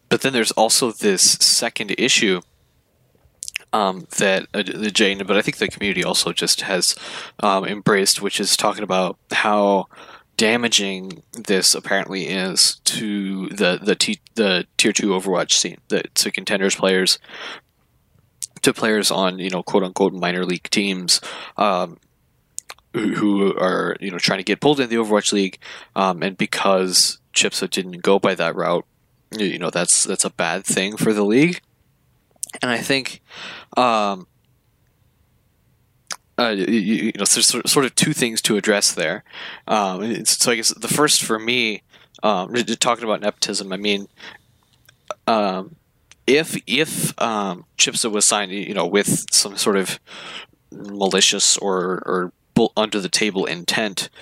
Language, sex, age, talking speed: English, male, 20-39, 150 wpm